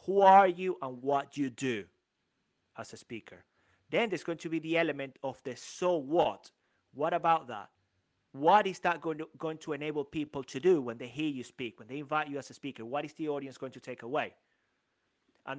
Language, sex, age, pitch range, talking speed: English, male, 30-49, 130-170 Hz, 220 wpm